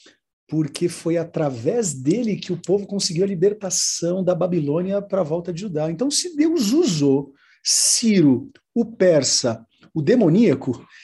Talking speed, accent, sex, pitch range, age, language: 135 wpm, Brazilian, male, 130-170 Hz, 50-69, Portuguese